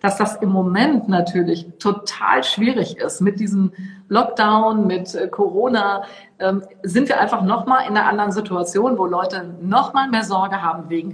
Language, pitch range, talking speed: German, 190-230 Hz, 165 wpm